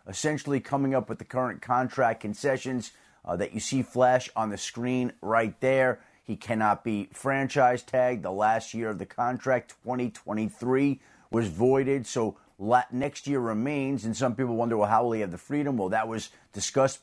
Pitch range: 105-135 Hz